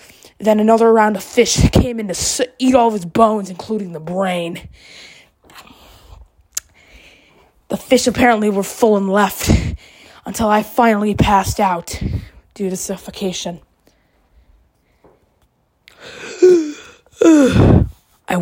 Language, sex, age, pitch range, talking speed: English, female, 20-39, 180-230 Hz, 105 wpm